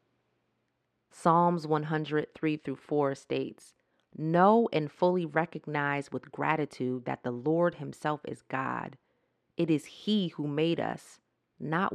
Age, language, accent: 30-49, English, American